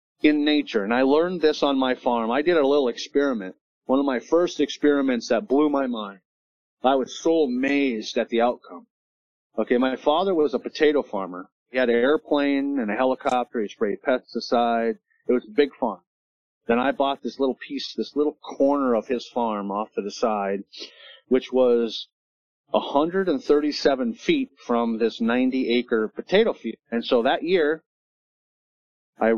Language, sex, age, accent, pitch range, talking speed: English, male, 30-49, American, 115-145 Hz, 170 wpm